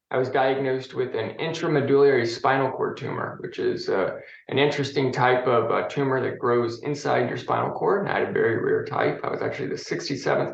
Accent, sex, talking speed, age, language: American, male, 205 wpm, 20-39, English